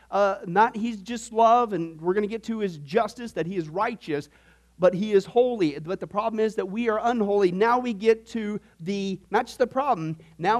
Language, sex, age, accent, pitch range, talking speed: English, male, 40-59, American, 145-215 Hz, 220 wpm